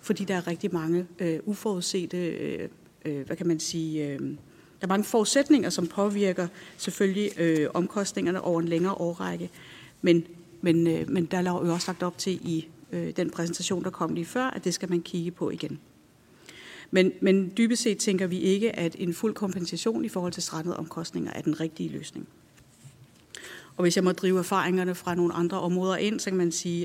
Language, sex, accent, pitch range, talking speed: Danish, female, native, 170-200 Hz, 180 wpm